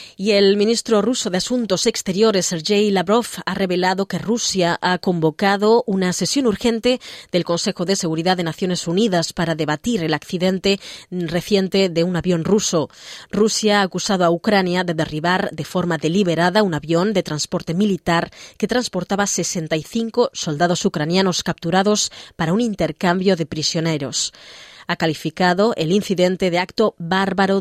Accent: Spanish